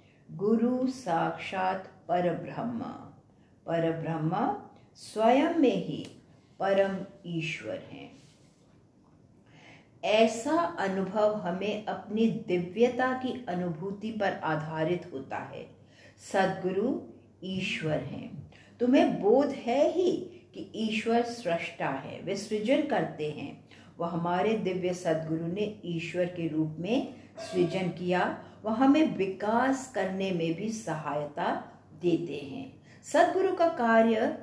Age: 50-69